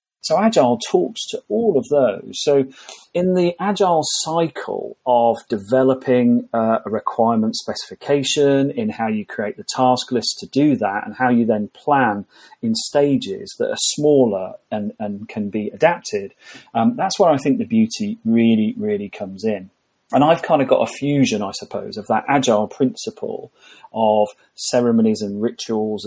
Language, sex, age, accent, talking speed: English, male, 40-59, British, 160 wpm